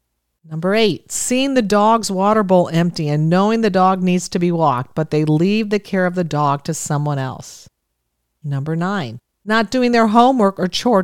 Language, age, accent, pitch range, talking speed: English, 50-69, American, 150-210 Hz, 190 wpm